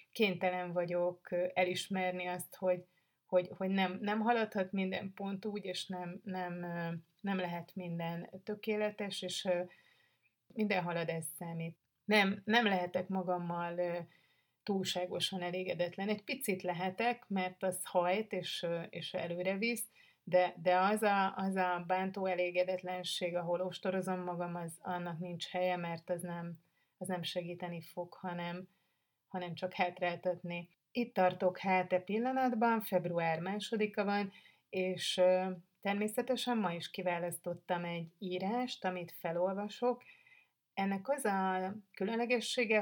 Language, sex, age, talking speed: Hungarian, female, 30-49, 120 wpm